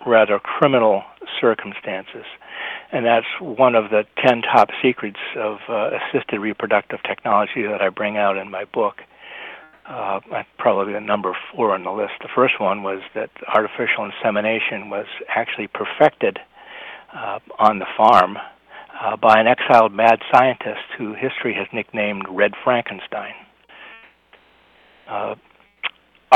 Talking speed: 130 wpm